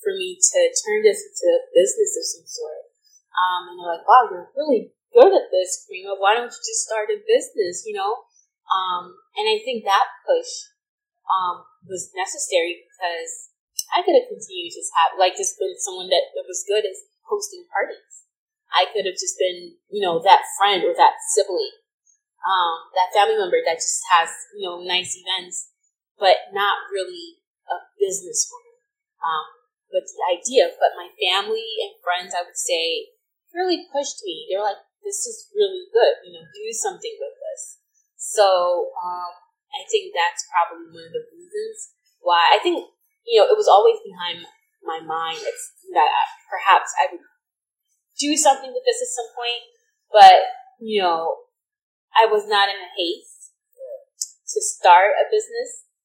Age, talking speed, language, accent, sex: 20-39, 175 wpm, English, American, female